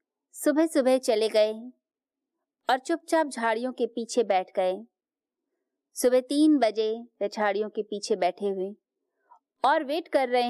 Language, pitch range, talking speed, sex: Hindi, 205-305 Hz, 130 wpm, female